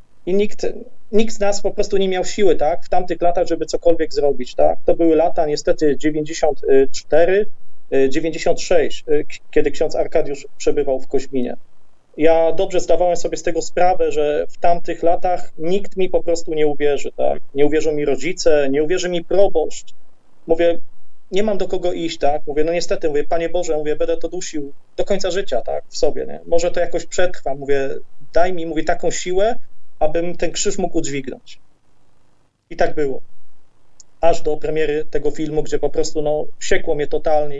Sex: male